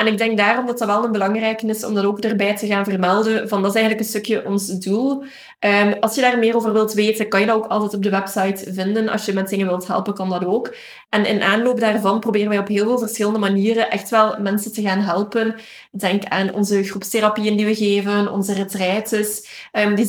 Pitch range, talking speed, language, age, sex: 200-225 Hz, 235 wpm, Dutch, 20-39, female